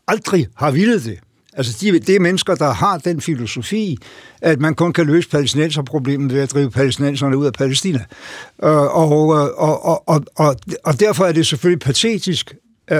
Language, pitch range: Danish, 135-170 Hz